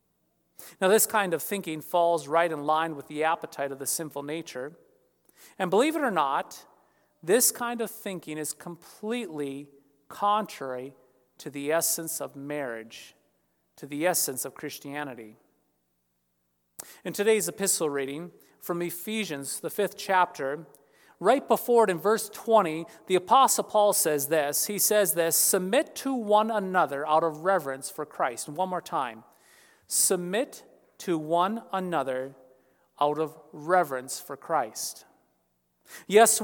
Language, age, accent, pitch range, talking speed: English, 40-59, American, 140-205 Hz, 135 wpm